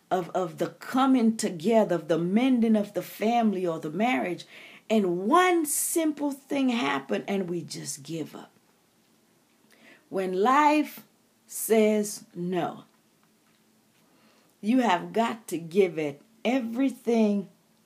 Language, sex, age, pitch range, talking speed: English, female, 40-59, 195-265 Hz, 120 wpm